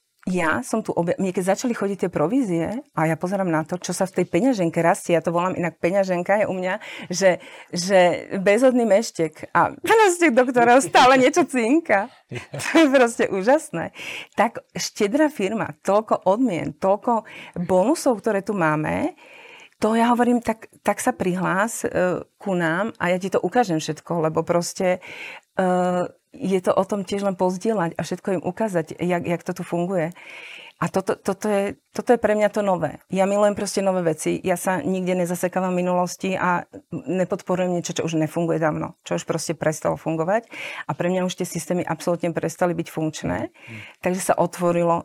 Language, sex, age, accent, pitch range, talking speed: Czech, female, 40-59, native, 175-210 Hz, 175 wpm